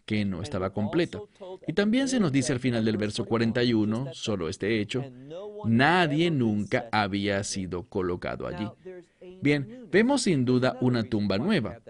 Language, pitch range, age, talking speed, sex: English, 105-165 Hz, 40-59, 150 wpm, male